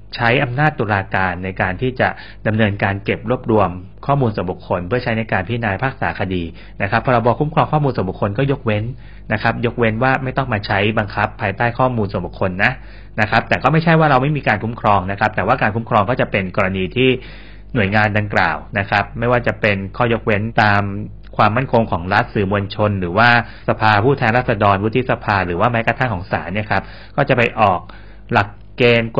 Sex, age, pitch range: male, 30-49, 100-125 Hz